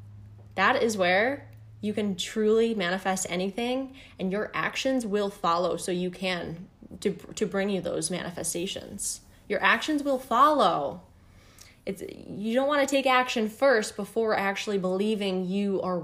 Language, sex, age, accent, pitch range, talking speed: English, female, 10-29, American, 185-255 Hz, 145 wpm